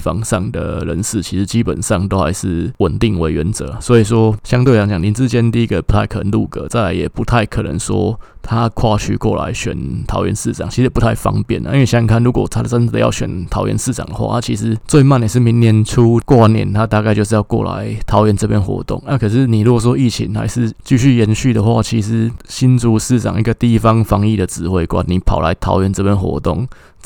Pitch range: 95-115 Hz